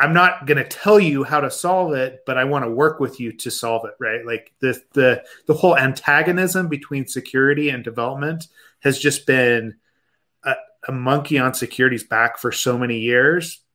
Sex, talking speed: male, 185 wpm